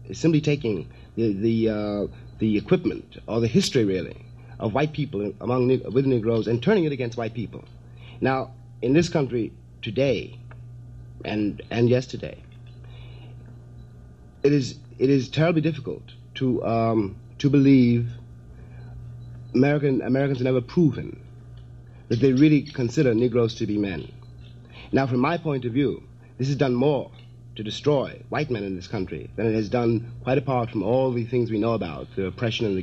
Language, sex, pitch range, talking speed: English, male, 110-130 Hz, 165 wpm